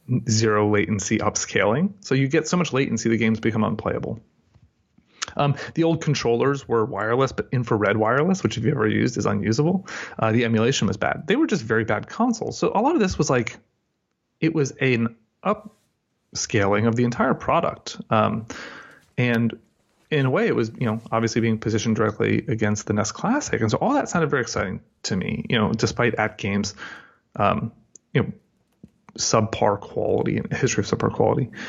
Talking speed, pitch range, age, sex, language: 180 wpm, 110-140 Hz, 30-49, male, English